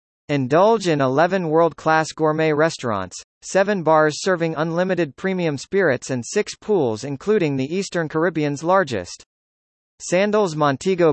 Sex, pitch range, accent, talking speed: male, 135-180 Hz, American, 120 wpm